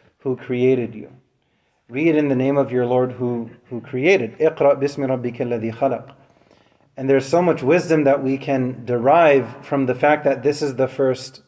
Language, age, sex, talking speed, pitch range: English, 30-49, male, 175 wpm, 135-165 Hz